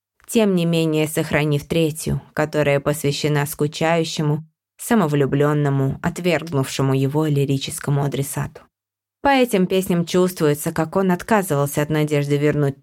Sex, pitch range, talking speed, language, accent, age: female, 145-170 Hz, 110 wpm, Russian, native, 20-39